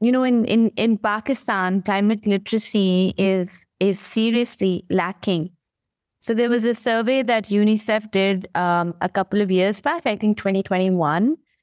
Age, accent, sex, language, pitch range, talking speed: 20-39, Indian, female, English, 175-220 Hz, 150 wpm